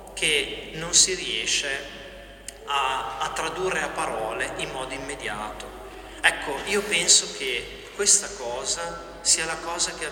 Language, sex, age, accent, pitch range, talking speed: Italian, male, 40-59, native, 150-200 Hz, 135 wpm